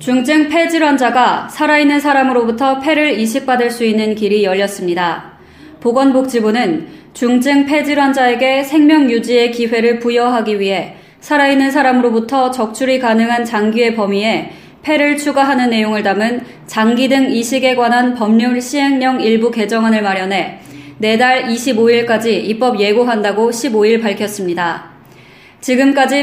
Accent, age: native, 20-39